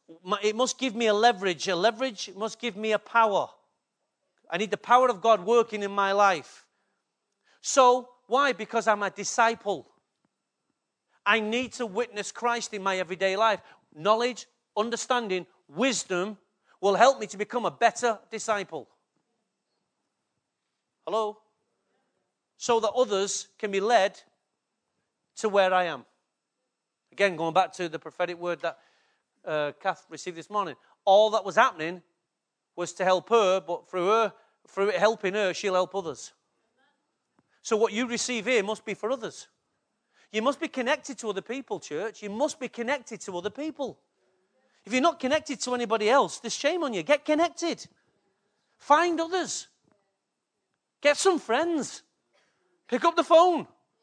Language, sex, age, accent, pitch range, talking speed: English, male, 40-59, British, 195-255 Hz, 150 wpm